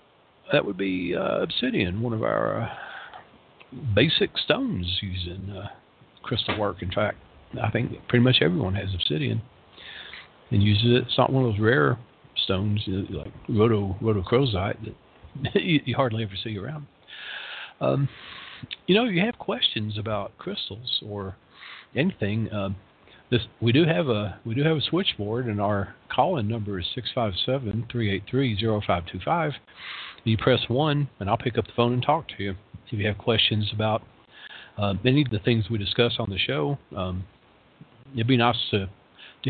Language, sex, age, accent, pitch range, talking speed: English, male, 50-69, American, 100-125 Hz, 150 wpm